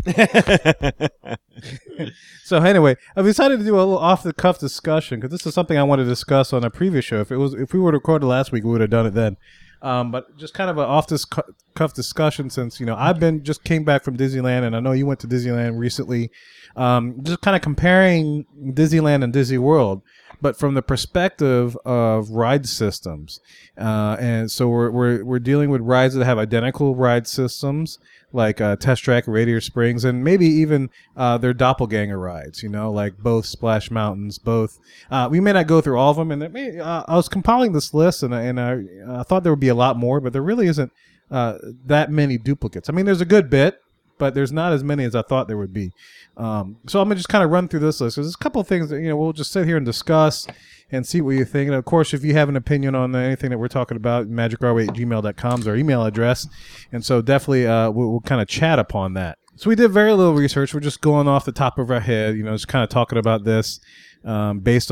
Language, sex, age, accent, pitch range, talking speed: English, male, 30-49, American, 115-155 Hz, 240 wpm